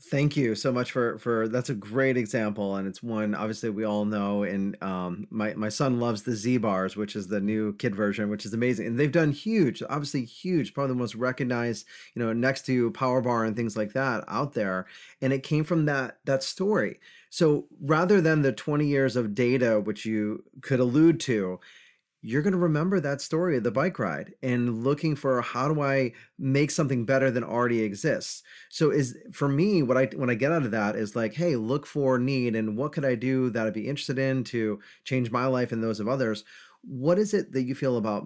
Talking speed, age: 225 wpm, 30-49